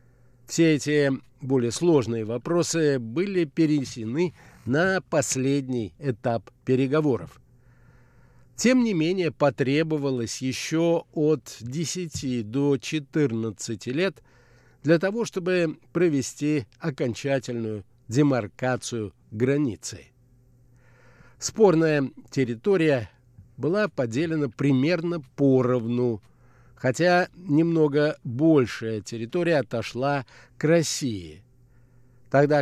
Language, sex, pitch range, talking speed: Russian, male, 120-155 Hz, 75 wpm